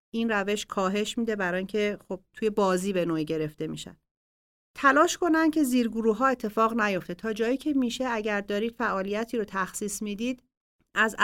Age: 40-59